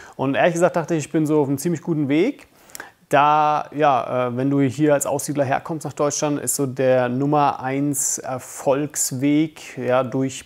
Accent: German